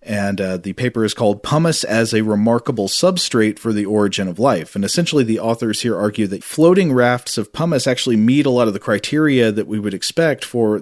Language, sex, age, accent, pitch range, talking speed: English, male, 40-59, American, 100-125 Hz, 215 wpm